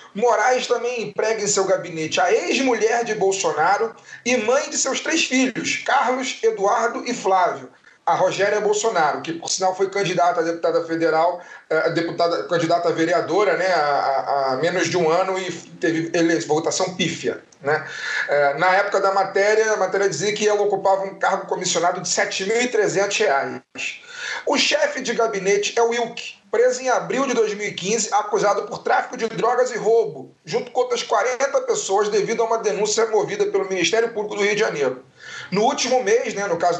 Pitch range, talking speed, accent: 190-250 Hz, 170 wpm, Brazilian